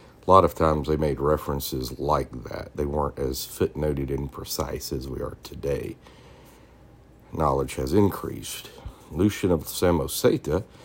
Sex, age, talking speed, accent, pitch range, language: male, 60-79, 140 wpm, American, 75-90 Hz, English